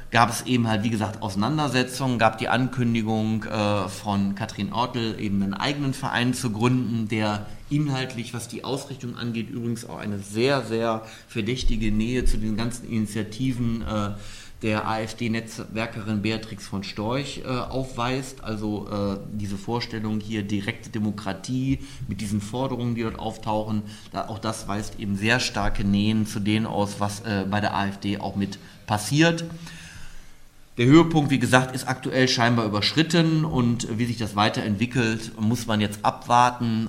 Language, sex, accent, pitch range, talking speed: German, male, German, 105-120 Hz, 155 wpm